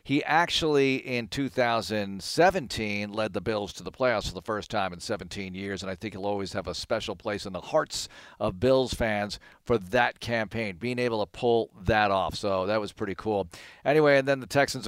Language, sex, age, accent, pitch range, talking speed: English, male, 50-69, American, 105-130 Hz, 205 wpm